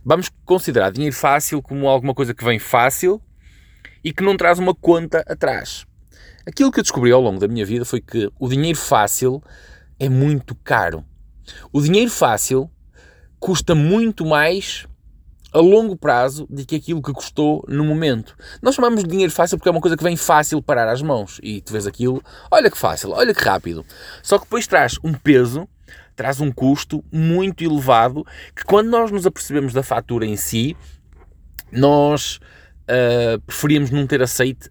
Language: Portuguese